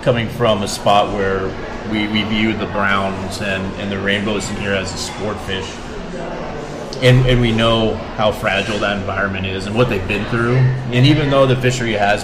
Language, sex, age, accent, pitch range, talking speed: English, male, 30-49, American, 105-125 Hz, 195 wpm